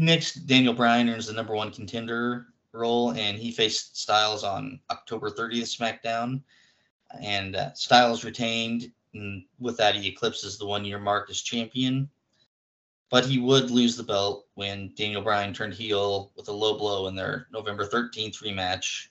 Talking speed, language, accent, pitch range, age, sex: 160 wpm, English, American, 100-120 Hz, 20-39, male